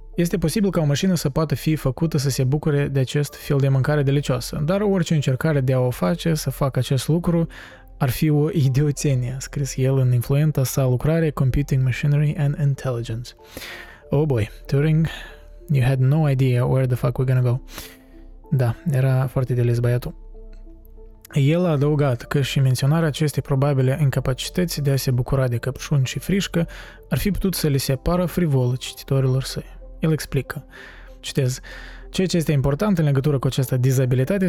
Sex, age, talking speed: male, 20-39, 170 wpm